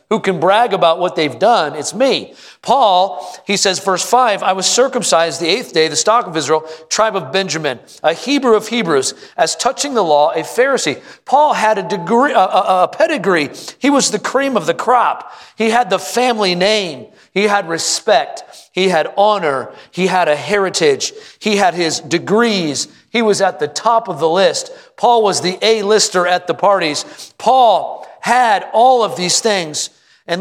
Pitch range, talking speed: 180-255 Hz, 180 wpm